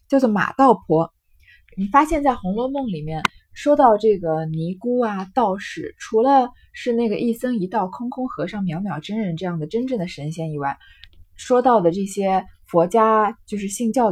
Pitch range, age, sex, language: 160-230 Hz, 20-39, female, Chinese